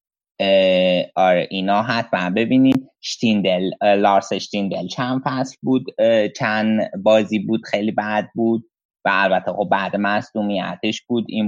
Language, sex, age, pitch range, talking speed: Persian, male, 20-39, 100-125 Hz, 120 wpm